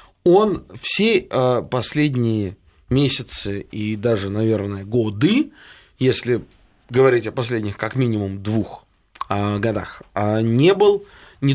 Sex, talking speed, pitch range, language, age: male, 100 wpm, 115-145 Hz, Russian, 20-39